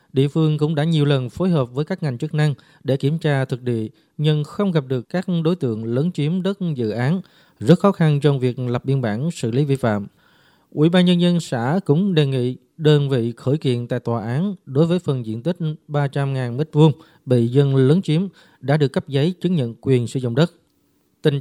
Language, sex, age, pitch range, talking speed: Vietnamese, male, 20-39, 130-165 Hz, 220 wpm